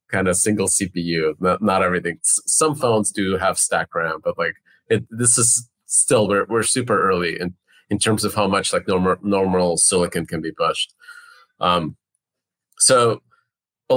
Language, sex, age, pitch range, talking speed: English, male, 30-49, 95-115 Hz, 170 wpm